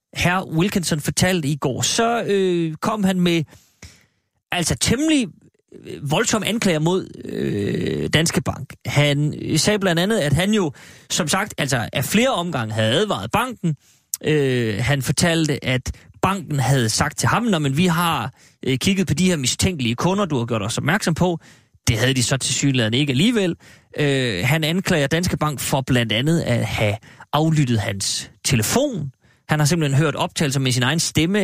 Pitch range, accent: 130-175 Hz, native